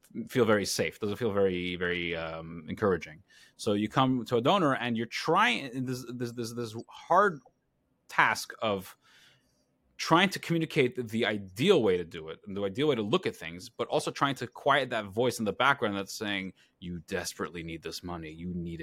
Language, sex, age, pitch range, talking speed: English, male, 30-49, 100-145 Hz, 200 wpm